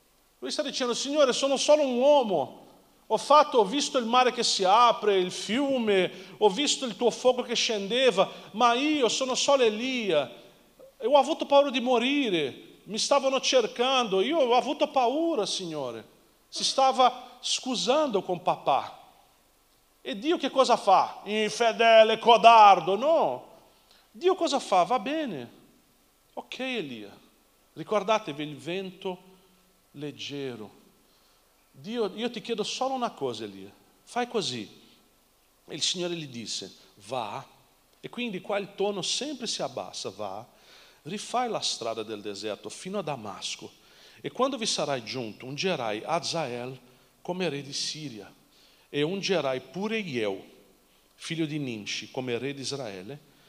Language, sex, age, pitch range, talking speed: Italian, male, 40-59, 150-250 Hz, 140 wpm